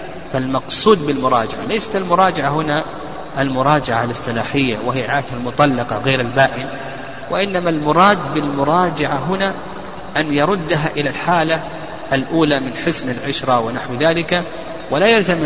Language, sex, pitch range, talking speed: Arabic, male, 130-160 Hz, 110 wpm